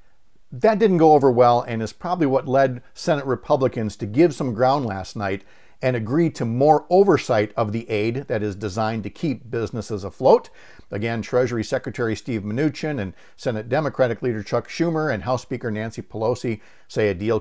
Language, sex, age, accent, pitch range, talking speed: English, male, 50-69, American, 110-160 Hz, 180 wpm